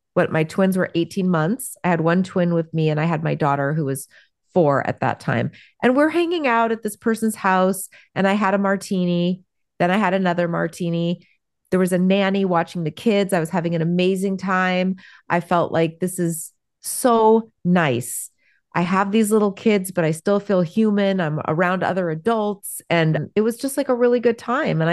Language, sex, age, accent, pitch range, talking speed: English, female, 30-49, American, 165-200 Hz, 205 wpm